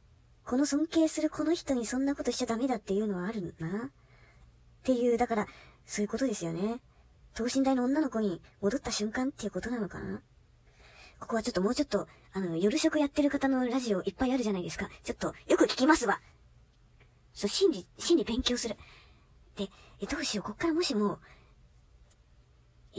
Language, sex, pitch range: Japanese, male, 205-290 Hz